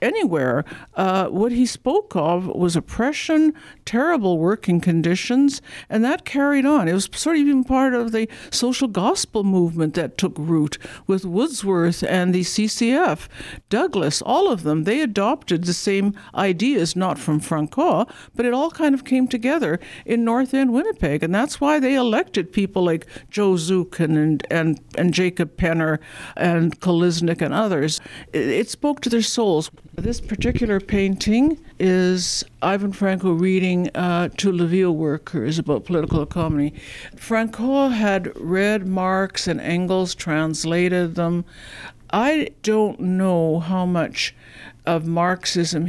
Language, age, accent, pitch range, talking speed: English, 60-79, American, 170-220 Hz, 145 wpm